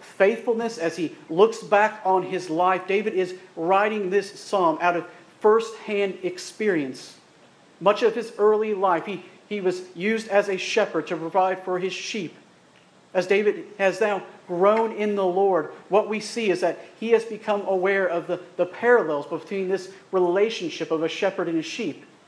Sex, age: male, 50-69